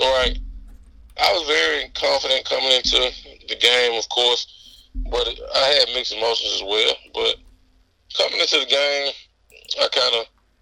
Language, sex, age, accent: English, male, 20-39, American